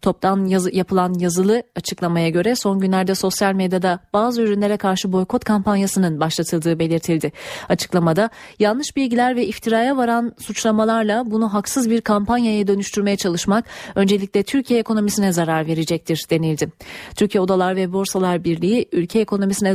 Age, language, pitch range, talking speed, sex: 30-49, Turkish, 185-230 Hz, 130 wpm, female